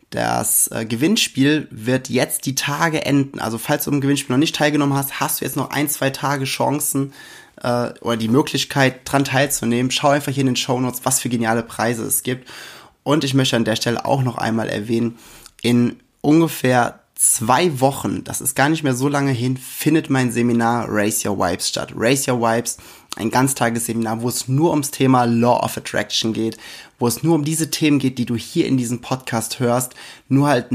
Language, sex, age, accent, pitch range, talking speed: German, male, 20-39, German, 115-135 Hz, 200 wpm